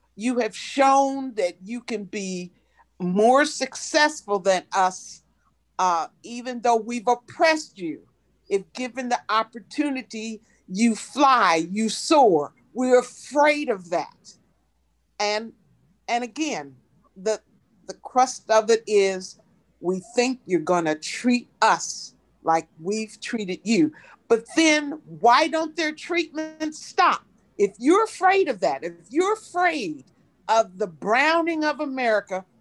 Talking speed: 125 wpm